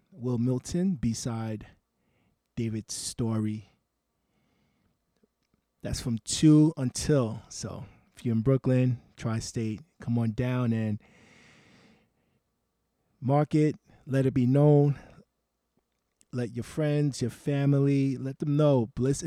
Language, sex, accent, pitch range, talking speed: English, male, American, 115-145 Hz, 105 wpm